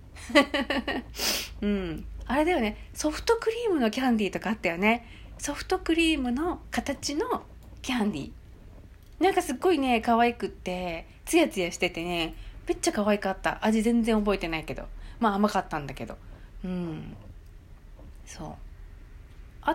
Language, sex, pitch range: Japanese, female, 170-265 Hz